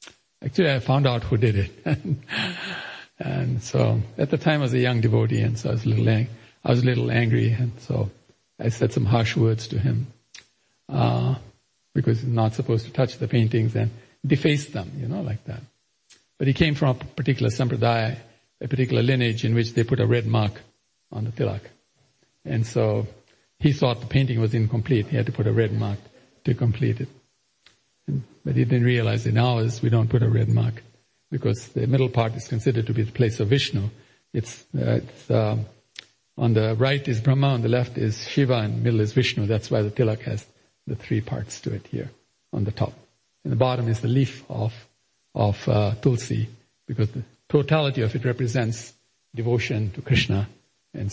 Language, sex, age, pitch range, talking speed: English, male, 50-69, 110-130 Hz, 200 wpm